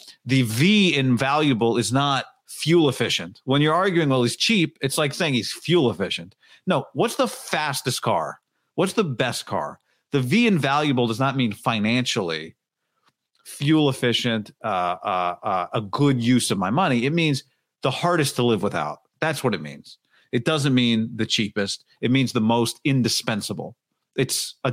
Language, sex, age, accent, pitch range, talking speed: English, male, 40-59, American, 105-135 Hz, 165 wpm